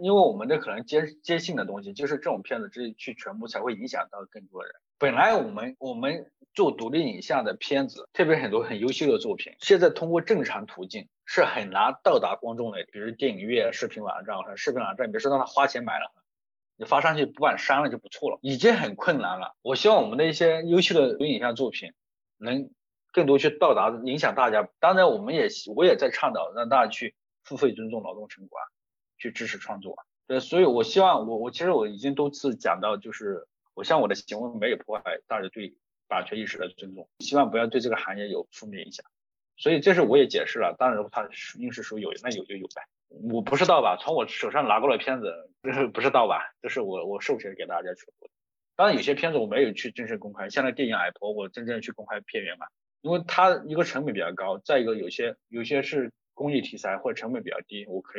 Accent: native